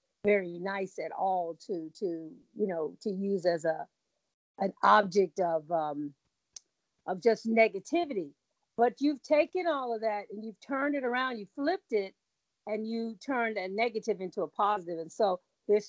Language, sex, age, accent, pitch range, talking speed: English, female, 50-69, American, 200-265 Hz, 165 wpm